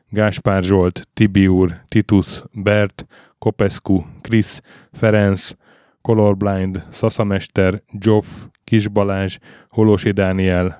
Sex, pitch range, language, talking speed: male, 95-110 Hz, Hungarian, 85 wpm